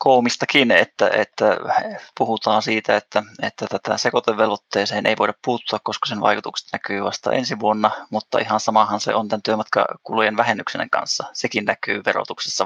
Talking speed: 140 wpm